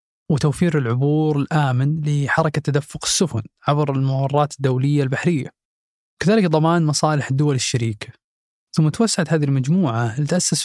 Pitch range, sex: 135-160 Hz, male